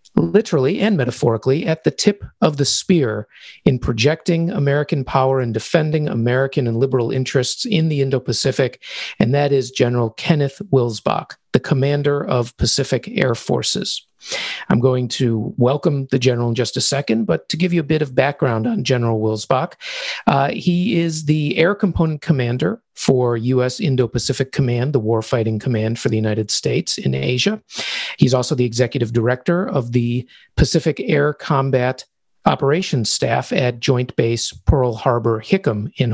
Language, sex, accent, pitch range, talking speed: English, male, American, 125-165 Hz, 155 wpm